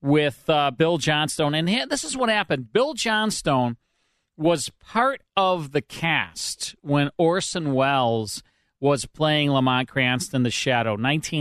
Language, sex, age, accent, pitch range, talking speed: English, male, 40-59, American, 125-150 Hz, 135 wpm